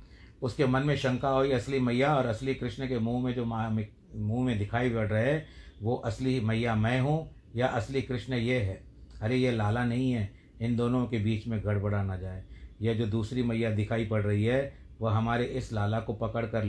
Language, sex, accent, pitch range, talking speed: Hindi, male, native, 105-125 Hz, 210 wpm